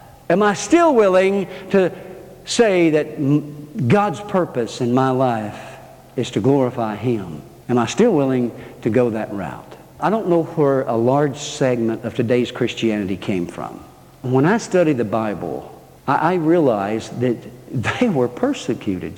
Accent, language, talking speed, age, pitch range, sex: American, English, 145 wpm, 60-79, 120-195 Hz, male